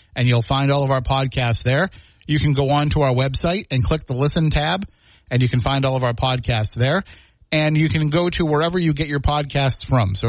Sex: male